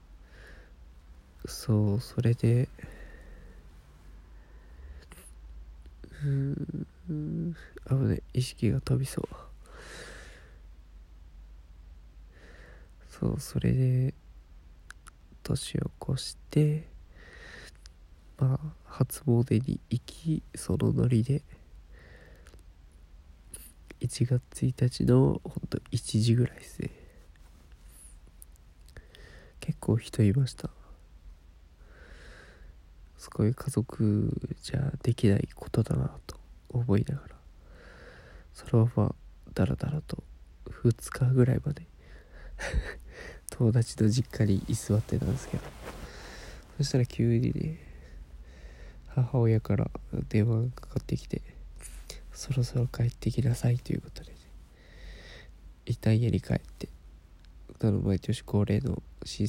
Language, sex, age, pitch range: Japanese, male, 20-39, 75-120 Hz